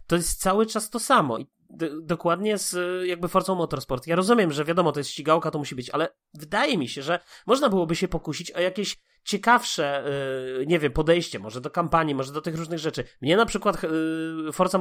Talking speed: 210 wpm